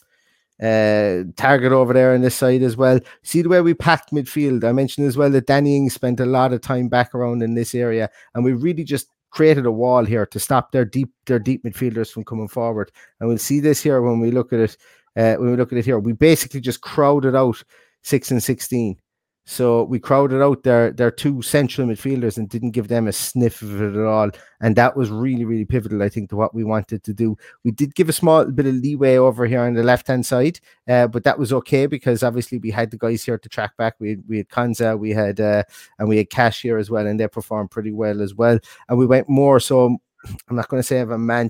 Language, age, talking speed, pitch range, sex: English, 30-49, 250 wpm, 115-130 Hz, male